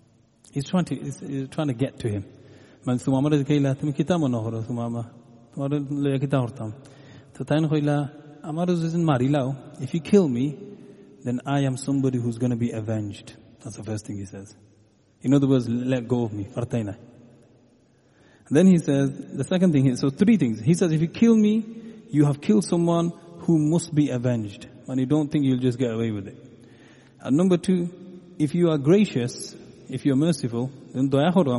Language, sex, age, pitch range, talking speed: English, male, 30-49, 120-150 Hz, 150 wpm